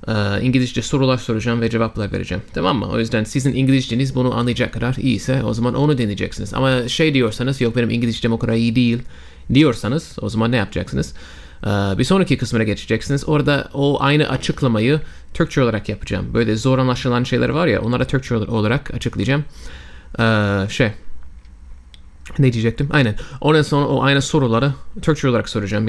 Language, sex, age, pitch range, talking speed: Turkish, male, 30-49, 110-140 Hz, 165 wpm